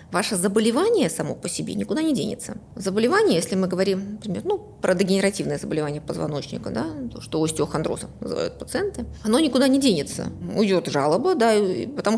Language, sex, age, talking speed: Russian, female, 20-39, 160 wpm